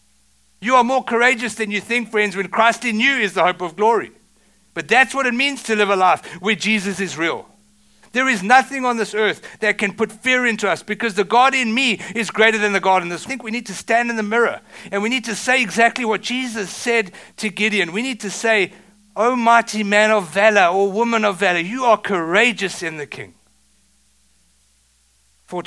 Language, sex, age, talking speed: English, male, 60-79, 225 wpm